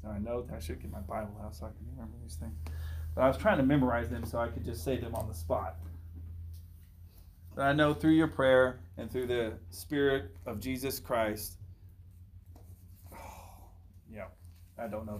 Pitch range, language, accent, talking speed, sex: 75-120 Hz, English, American, 195 wpm, male